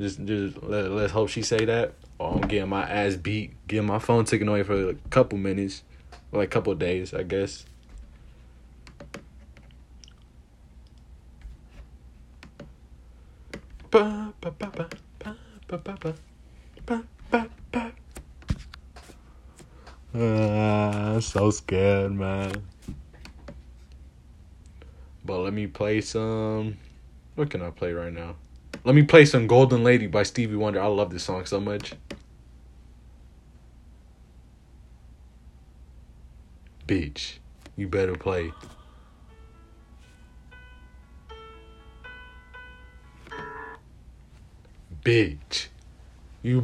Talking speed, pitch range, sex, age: 85 wpm, 70-105 Hz, male, 20-39